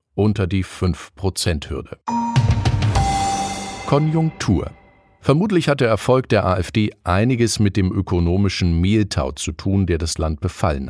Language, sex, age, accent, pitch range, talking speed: German, male, 50-69, German, 85-110 Hz, 115 wpm